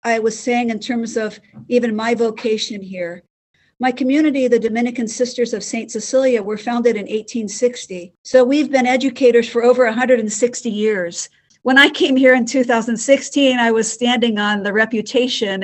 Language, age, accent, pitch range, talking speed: English, 50-69, American, 210-250 Hz, 160 wpm